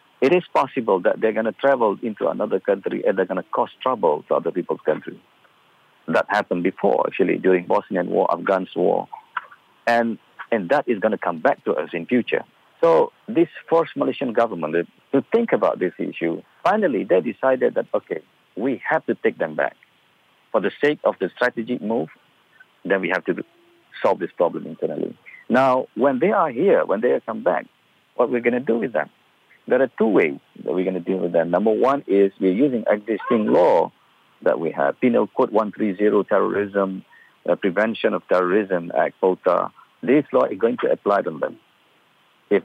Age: 50-69